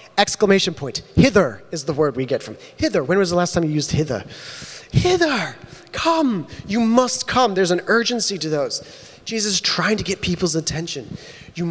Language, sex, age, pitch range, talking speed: English, male, 30-49, 140-175 Hz, 185 wpm